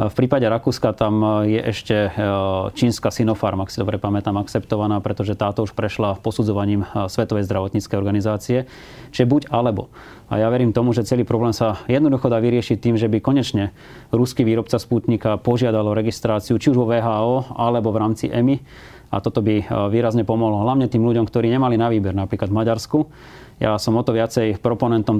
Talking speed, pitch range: 175 wpm, 110-120 Hz